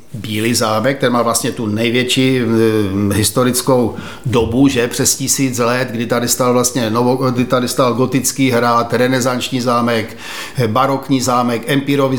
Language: Czech